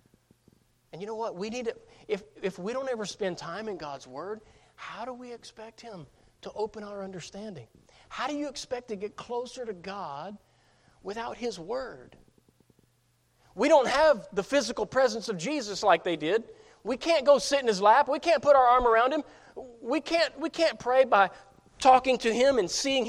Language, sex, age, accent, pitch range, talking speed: English, male, 40-59, American, 170-250 Hz, 180 wpm